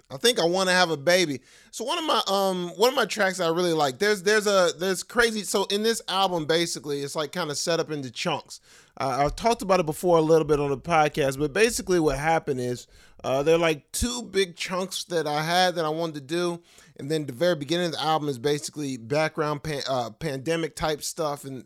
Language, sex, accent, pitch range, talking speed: English, male, American, 145-180 Hz, 240 wpm